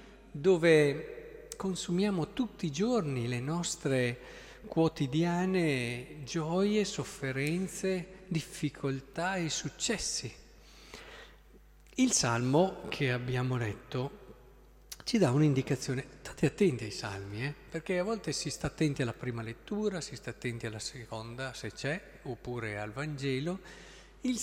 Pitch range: 120-180 Hz